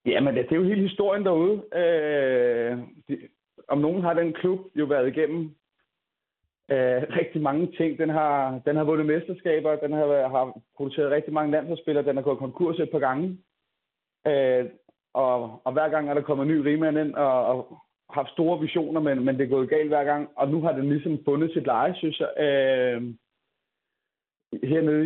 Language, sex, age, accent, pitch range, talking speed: Danish, male, 30-49, native, 135-160 Hz, 190 wpm